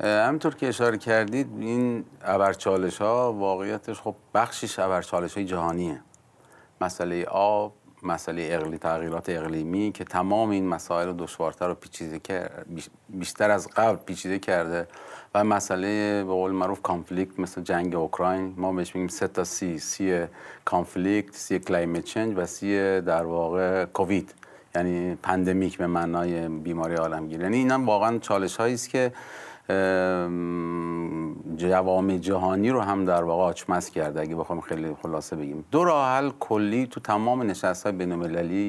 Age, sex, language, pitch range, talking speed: 40-59, male, Persian, 85-105 Hz, 135 wpm